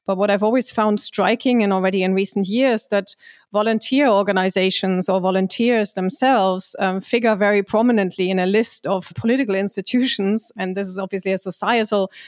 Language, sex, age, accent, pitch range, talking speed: English, female, 30-49, German, 185-210 Hz, 160 wpm